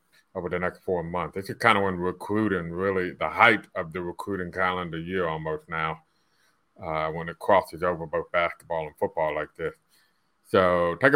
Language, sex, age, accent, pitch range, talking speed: English, male, 30-49, American, 90-105 Hz, 185 wpm